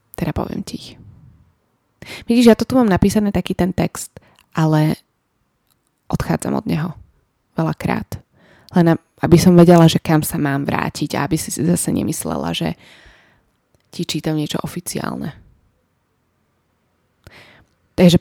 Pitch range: 150-185 Hz